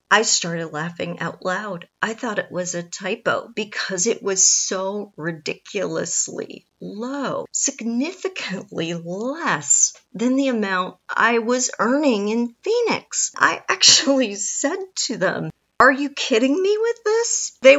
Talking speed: 130 wpm